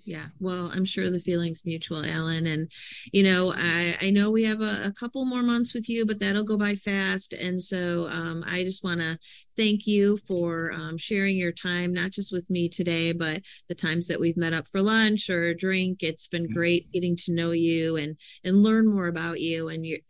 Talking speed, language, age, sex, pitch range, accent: 220 wpm, English, 40-59, female, 165-200 Hz, American